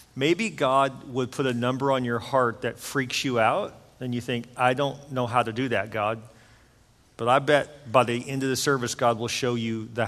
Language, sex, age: English, male, 40-59